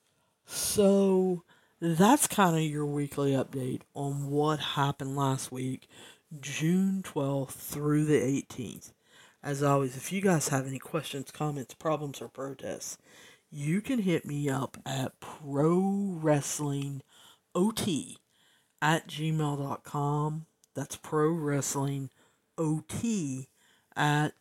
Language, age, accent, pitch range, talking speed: English, 50-69, American, 140-160 Hz, 110 wpm